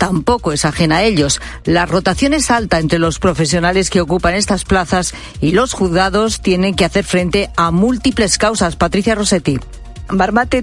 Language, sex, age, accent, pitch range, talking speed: Spanish, female, 50-69, Spanish, 170-215 Hz, 165 wpm